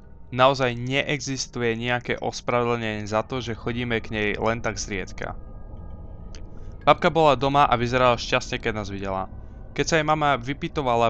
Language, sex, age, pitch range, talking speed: Slovak, male, 20-39, 105-130 Hz, 145 wpm